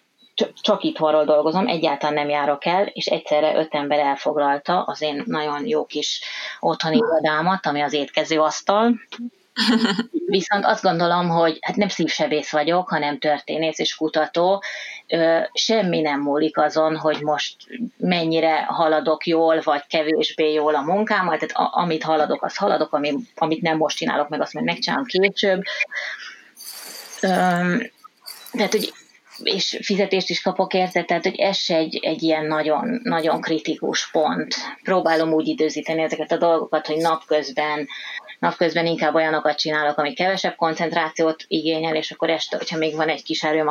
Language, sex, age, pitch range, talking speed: Hungarian, female, 30-49, 150-185 Hz, 140 wpm